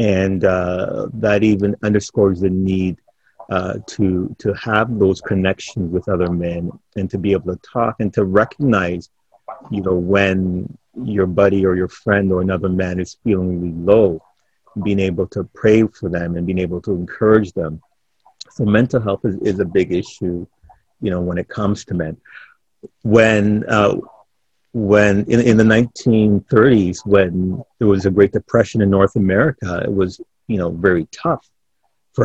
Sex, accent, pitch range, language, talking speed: male, American, 95-105 Hz, English, 165 wpm